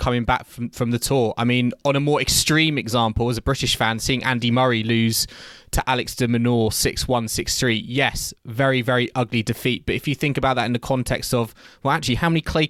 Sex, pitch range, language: male, 115-135 Hz, English